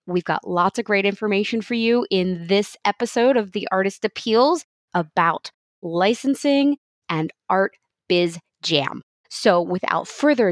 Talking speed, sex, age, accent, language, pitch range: 135 wpm, female, 20-39, American, English, 180-265 Hz